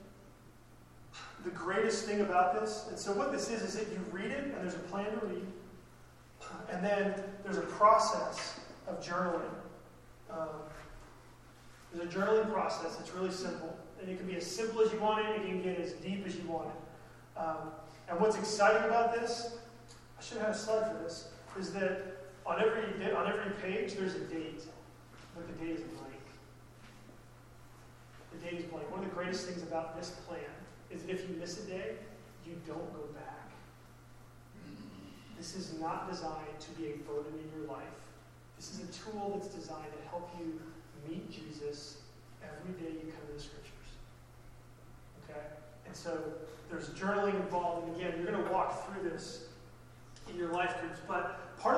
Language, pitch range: English, 160-200 Hz